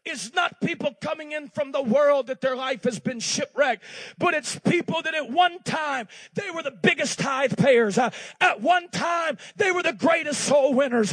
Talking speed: 200 wpm